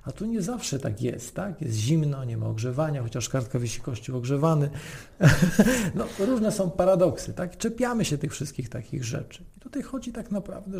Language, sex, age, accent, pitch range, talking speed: Polish, male, 40-59, native, 130-160 Hz, 185 wpm